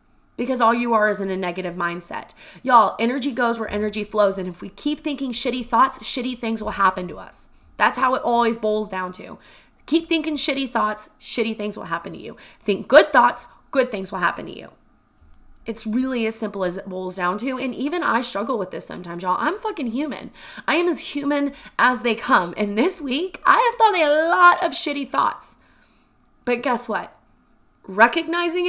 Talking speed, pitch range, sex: 200 wpm, 215-280 Hz, female